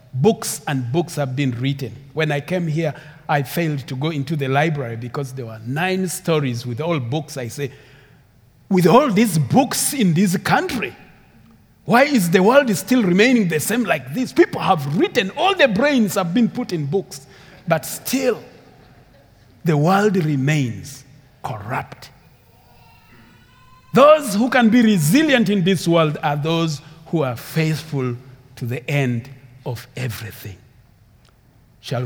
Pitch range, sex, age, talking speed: 125-170 Hz, male, 40-59, 150 wpm